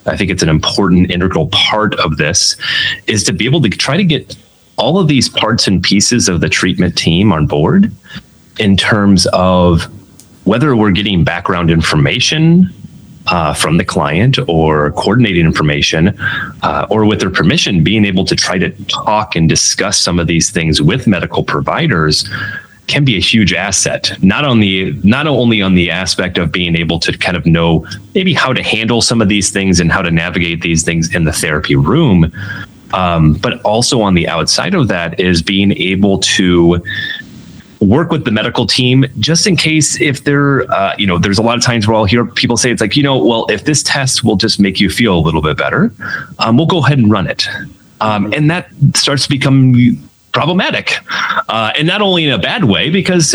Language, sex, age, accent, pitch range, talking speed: English, male, 30-49, American, 90-130 Hz, 200 wpm